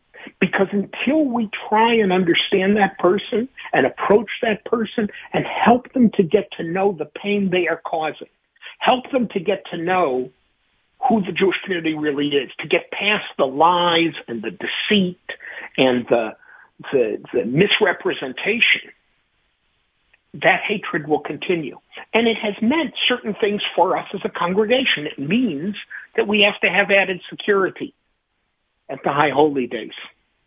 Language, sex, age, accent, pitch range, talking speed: English, male, 60-79, American, 165-230 Hz, 150 wpm